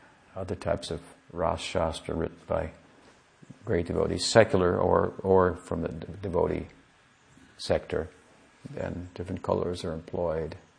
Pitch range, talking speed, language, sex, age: 85-100 Hz, 115 wpm, English, male, 50-69